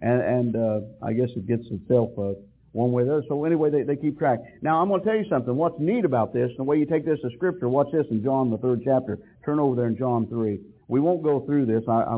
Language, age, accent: English, 60-79, American